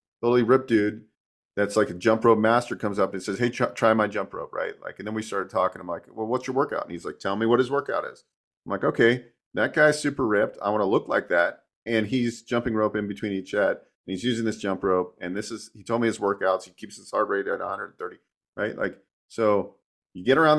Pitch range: 105-135 Hz